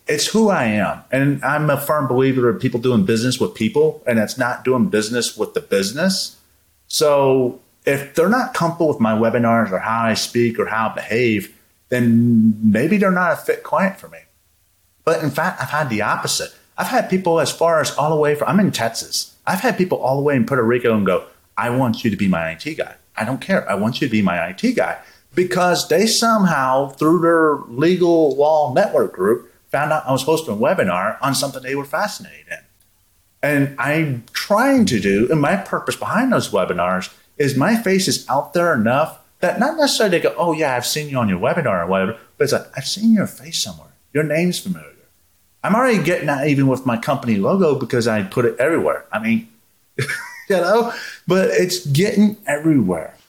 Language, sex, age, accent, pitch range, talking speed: English, male, 30-49, American, 120-175 Hz, 210 wpm